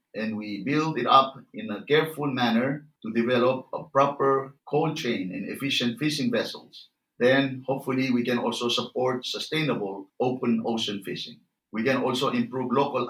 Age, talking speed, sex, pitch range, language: 50-69, 155 wpm, male, 115-140 Hz, English